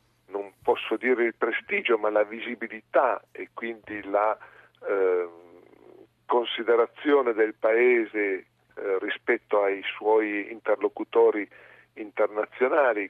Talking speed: 90 wpm